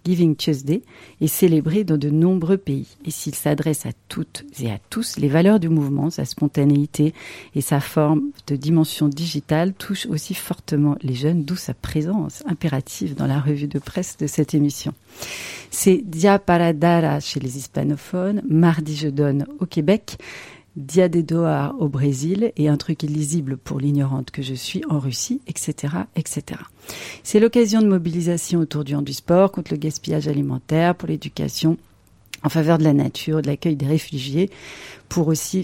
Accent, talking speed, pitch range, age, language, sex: French, 180 wpm, 145-170 Hz, 40-59, French, female